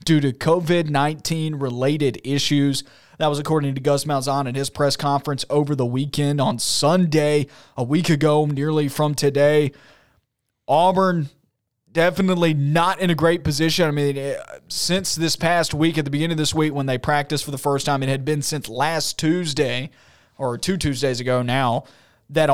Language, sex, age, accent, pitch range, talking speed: English, male, 20-39, American, 135-155 Hz, 170 wpm